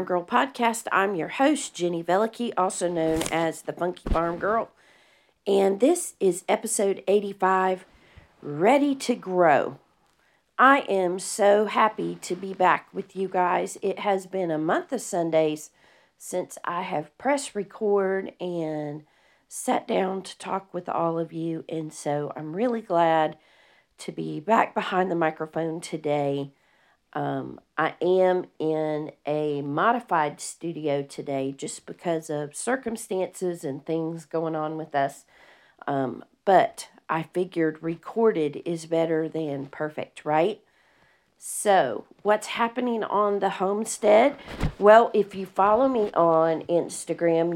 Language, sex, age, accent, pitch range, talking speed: English, female, 40-59, American, 160-200 Hz, 135 wpm